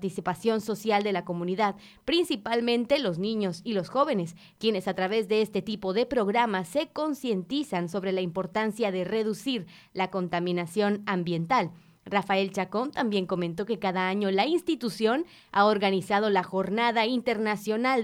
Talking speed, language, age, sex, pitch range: 145 wpm, Spanish, 20-39, female, 185-245 Hz